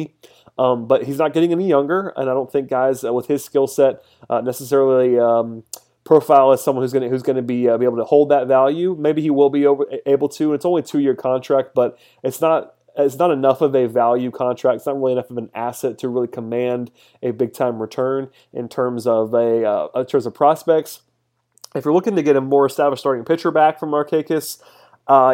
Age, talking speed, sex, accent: 30-49, 220 wpm, male, American